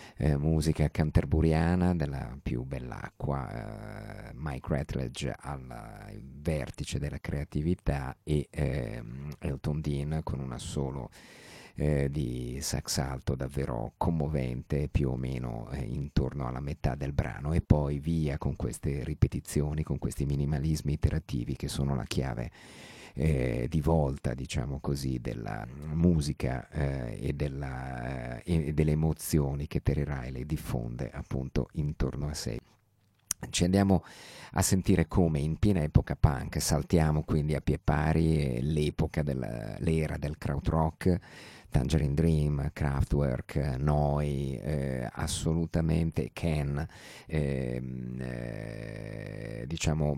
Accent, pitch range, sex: native, 70-80 Hz, male